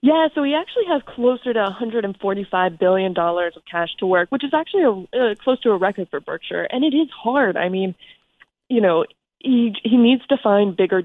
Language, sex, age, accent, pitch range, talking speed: English, female, 20-39, American, 185-235 Hz, 200 wpm